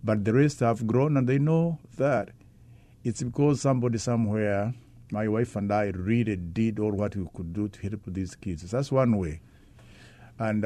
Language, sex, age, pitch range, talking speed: English, male, 50-69, 105-135 Hz, 180 wpm